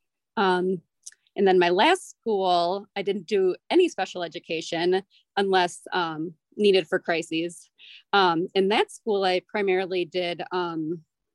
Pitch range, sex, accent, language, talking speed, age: 170-200 Hz, female, American, English, 130 wpm, 30-49